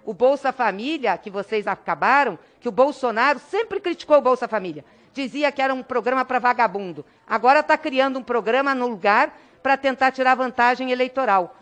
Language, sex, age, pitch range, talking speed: Portuguese, female, 50-69, 225-285 Hz, 170 wpm